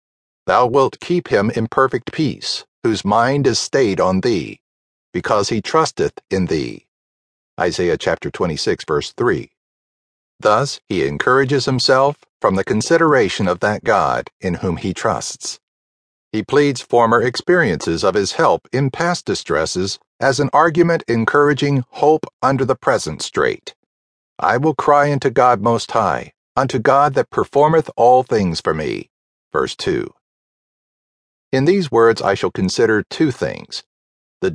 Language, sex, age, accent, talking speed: English, male, 50-69, American, 140 wpm